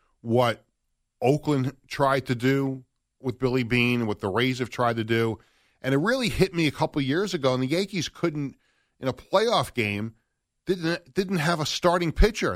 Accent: American